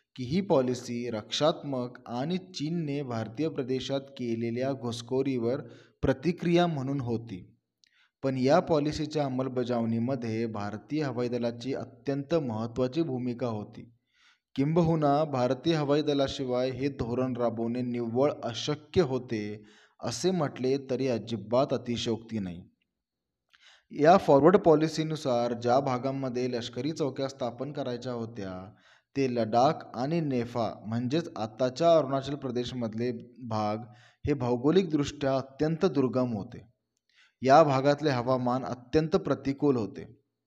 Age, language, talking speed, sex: 20-39, Marathi, 100 wpm, male